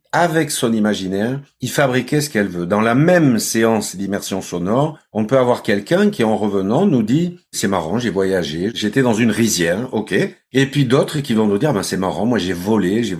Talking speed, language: 225 wpm, French